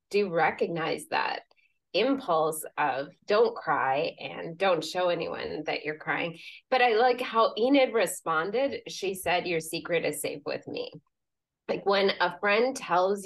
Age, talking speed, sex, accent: 20-39, 150 wpm, female, American